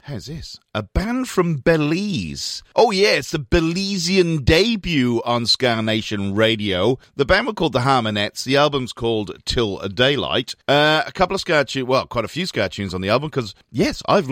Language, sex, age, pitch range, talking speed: English, male, 40-59, 90-135 Hz, 190 wpm